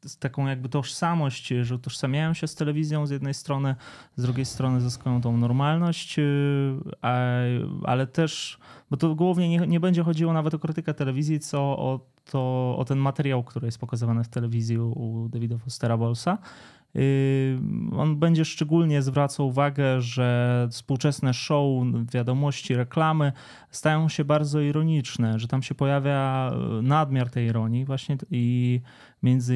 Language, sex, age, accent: Polish, male, 20-39, native